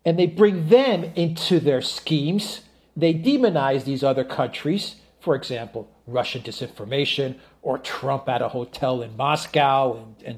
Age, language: 40-59, English